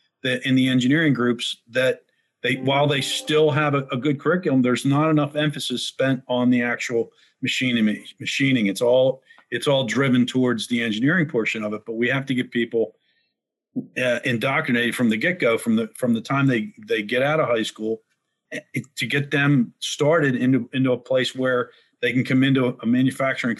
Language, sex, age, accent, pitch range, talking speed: English, male, 50-69, American, 120-140 Hz, 190 wpm